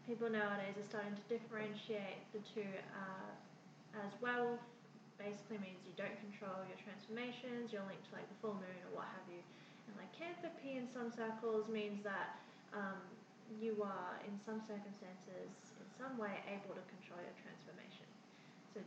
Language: English